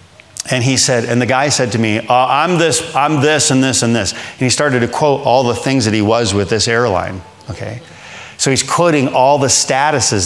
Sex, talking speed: male, 230 wpm